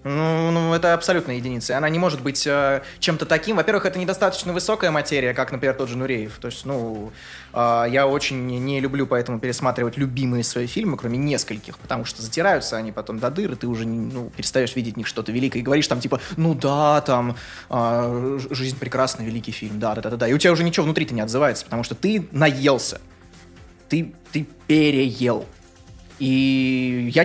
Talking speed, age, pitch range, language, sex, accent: 185 wpm, 20-39, 115-155 Hz, Russian, male, native